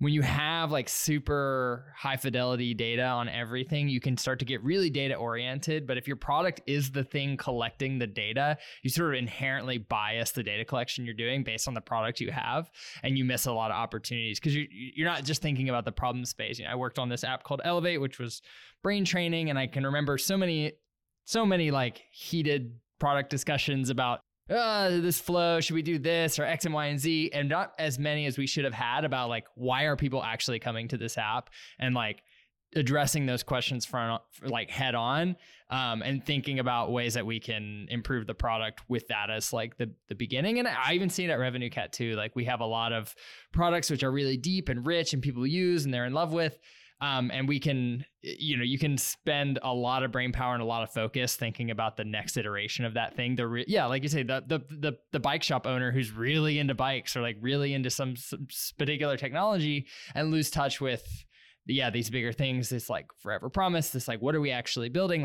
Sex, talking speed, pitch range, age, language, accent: male, 230 wpm, 120-150 Hz, 20-39, English, American